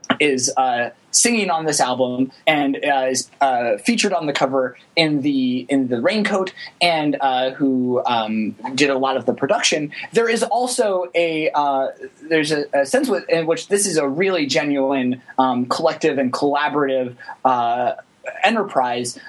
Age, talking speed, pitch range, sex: 20-39, 160 wpm, 135-180 Hz, male